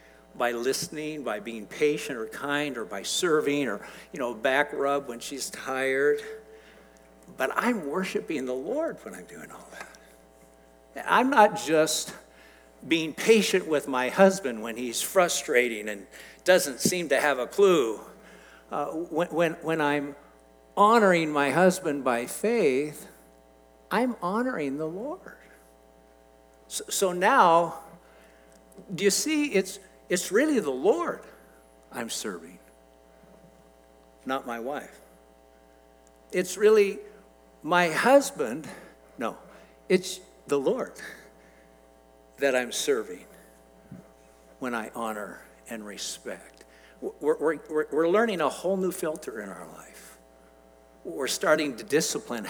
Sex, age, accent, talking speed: male, 60-79, American, 120 wpm